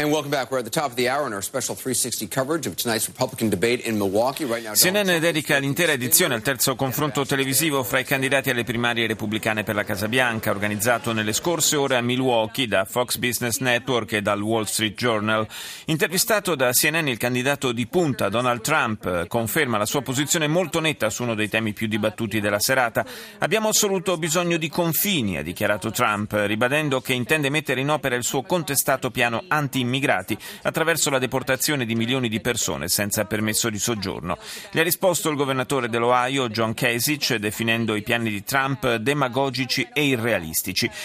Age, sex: 40-59, male